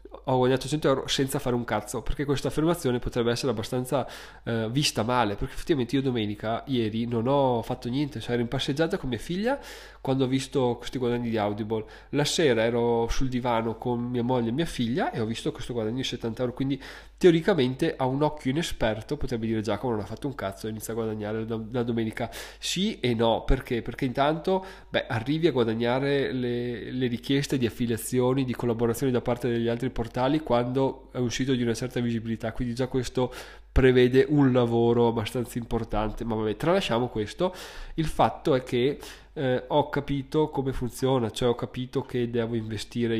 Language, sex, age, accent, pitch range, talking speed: Italian, male, 20-39, native, 115-135 Hz, 190 wpm